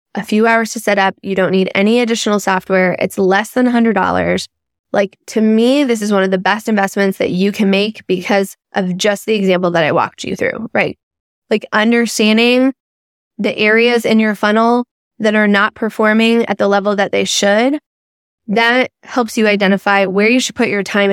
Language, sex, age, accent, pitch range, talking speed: English, female, 10-29, American, 195-230 Hz, 195 wpm